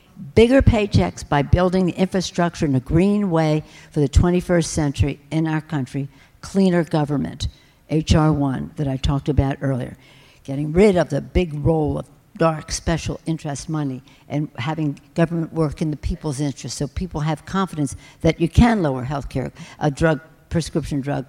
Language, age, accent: English, 60-79, American